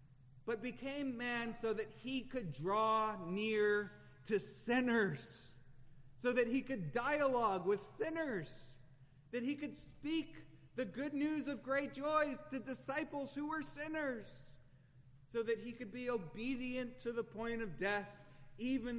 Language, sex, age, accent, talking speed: English, male, 30-49, American, 140 wpm